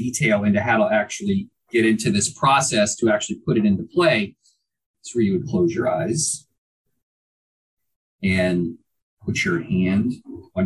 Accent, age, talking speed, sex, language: American, 40-59, 150 wpm, male, English